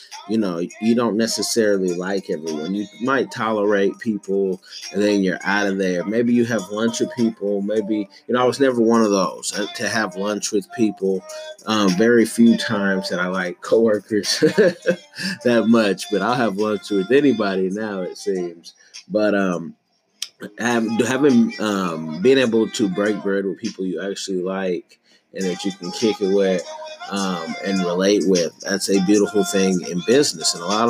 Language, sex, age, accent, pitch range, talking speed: English, male, 30-49, American, 100-120 Hz, 175 wpm